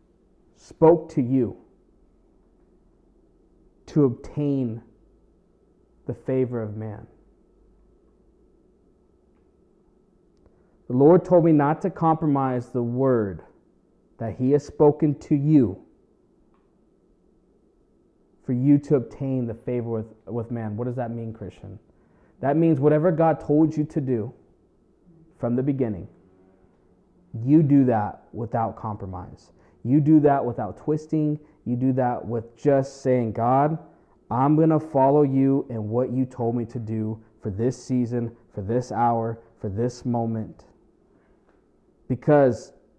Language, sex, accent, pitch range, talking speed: English, male, American, 115-145 Hz, 125 wpm